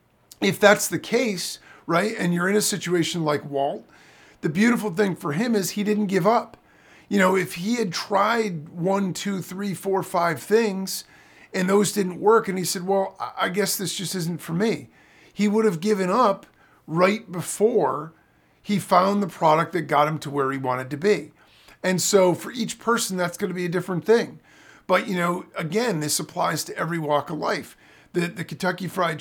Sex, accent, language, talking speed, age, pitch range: male, American, English, 195 wpm, 50-69, 165-205 Hz